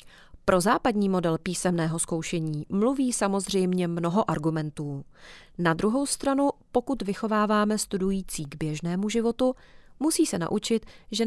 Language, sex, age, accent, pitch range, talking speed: Czech, female, 40-59, native, 170-230 Hz, 115 wpm